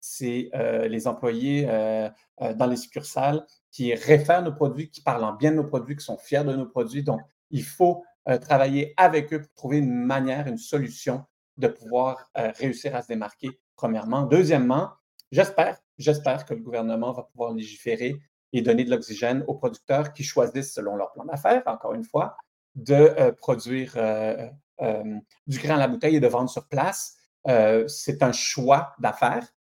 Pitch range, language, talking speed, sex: 115-145 Hz, French, 180 wpm, male